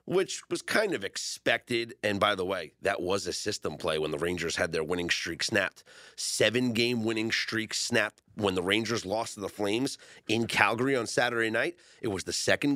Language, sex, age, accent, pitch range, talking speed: English, male, 30-49, American, 110-145 Hz, 200 wpm